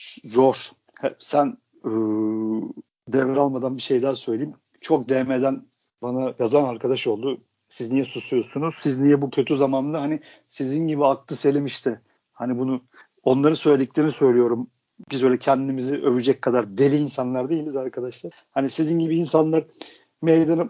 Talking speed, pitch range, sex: 140 wpm, 130-180 Hz, male